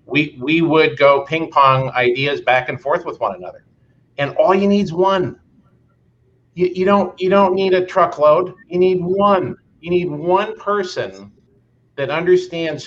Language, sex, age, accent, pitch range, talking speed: English, male, 50-69, American, 130-180 Hz, 170 wpm